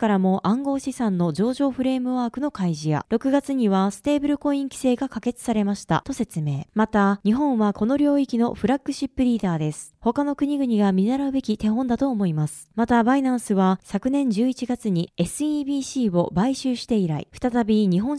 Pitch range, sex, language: 190-270 Hz, female, Japanese